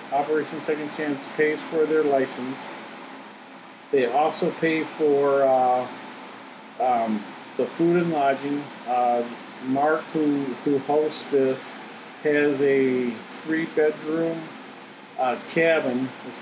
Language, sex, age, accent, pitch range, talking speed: English, male, 40-59, American, 135-155 Hz, 105 wpm